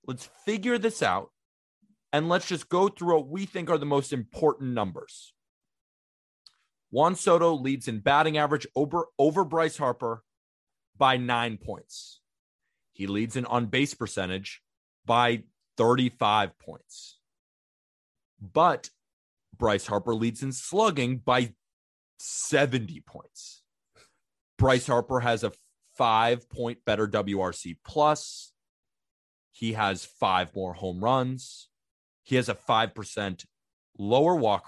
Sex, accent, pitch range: male, American, 100-140 Hz